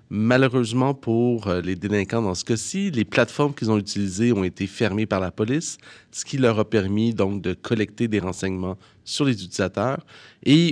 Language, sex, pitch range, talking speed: French, male, 100-130 Hz, 180 wpm